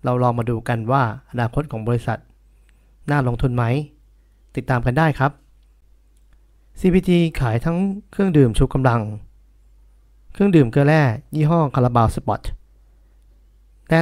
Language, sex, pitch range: Thai, male, 115-150 Hz